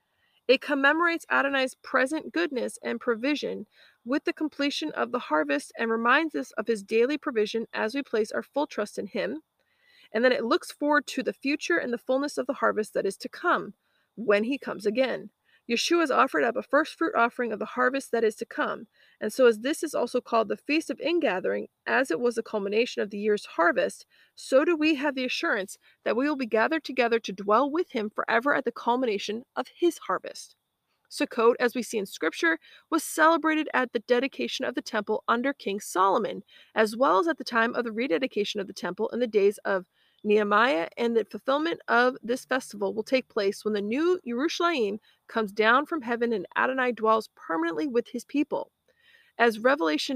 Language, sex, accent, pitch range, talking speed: English, female, American, 225-290 Hz, 200 wpm